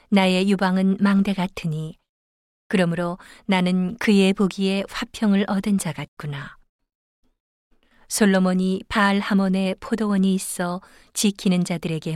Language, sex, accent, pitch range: Korean, female, native, 170-200 Hz